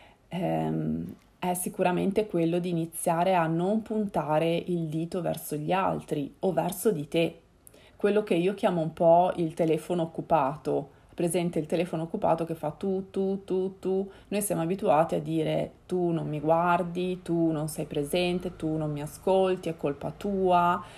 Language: Italian